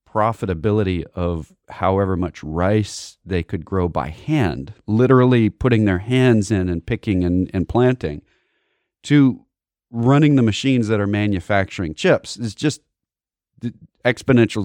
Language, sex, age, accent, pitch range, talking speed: English, male, 40-59, American, 95-130 Hz, 125 wpm